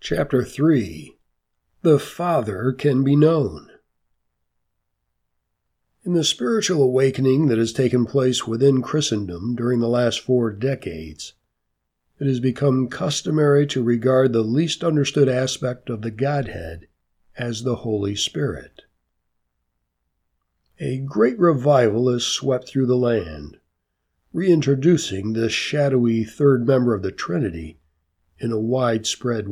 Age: 60-79